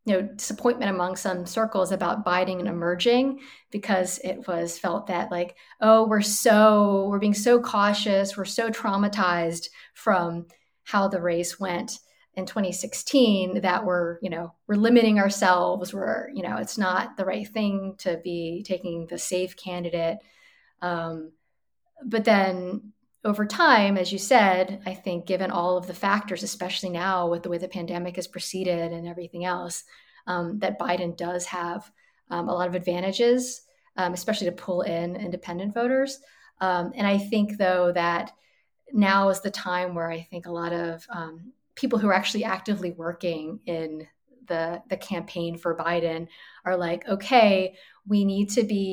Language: English